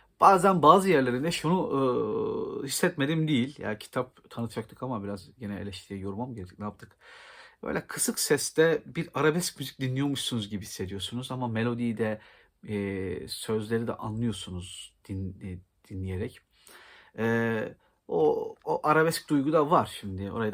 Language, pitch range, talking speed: Turkish, 100-150 Hz, 135 wpm